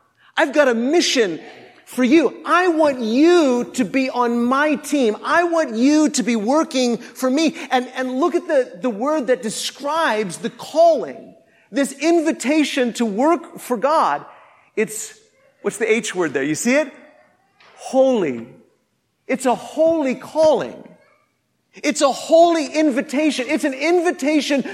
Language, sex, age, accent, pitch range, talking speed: English, male, 40-59, American, 245-310 Hz, 145 wpm